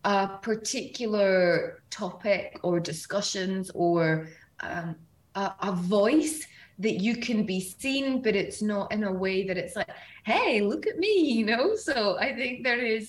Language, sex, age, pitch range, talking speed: Arabic, female, 20-39, 180-225 Hz, 160 wpm